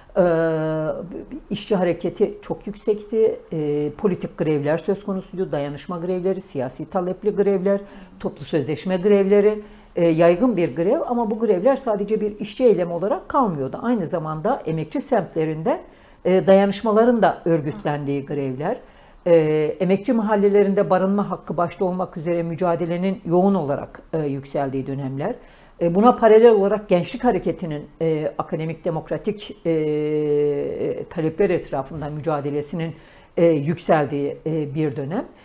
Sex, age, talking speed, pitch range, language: female, 60-79, 110 wpm, 155-215 Hz, Turkish